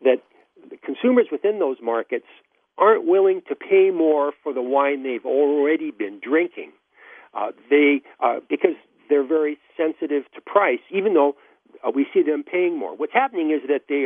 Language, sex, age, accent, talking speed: English, male, 60-79, American, 170 wpm